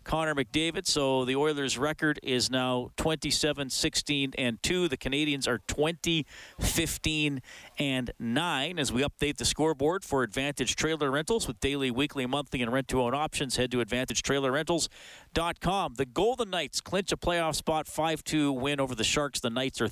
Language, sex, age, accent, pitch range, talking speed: English, male, 40-59, American, 125-160 Hz, 140 wpm